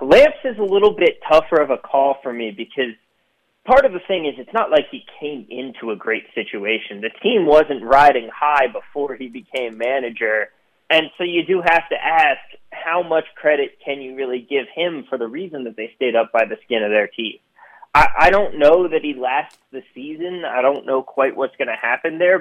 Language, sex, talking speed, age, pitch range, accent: English, male, 215 wpm, 30-49, 125-165 Hz, American